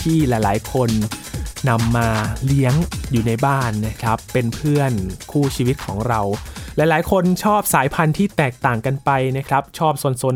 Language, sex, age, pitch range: Thai, male, 20-39, 120-165 Hz